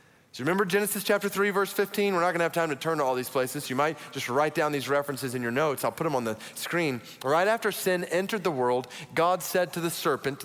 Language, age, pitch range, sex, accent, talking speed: English, 30-49, 140-195 Hz, male, American, 260 wpm